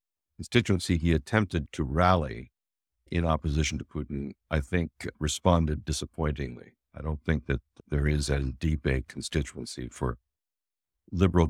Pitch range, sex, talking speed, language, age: 75-85 Hz, male, 130 wpm, English, 60-79